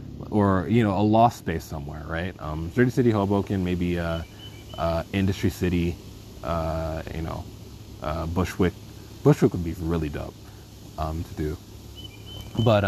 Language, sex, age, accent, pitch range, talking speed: English, male, 20-39, American, 85-105 Hz, 145 wpm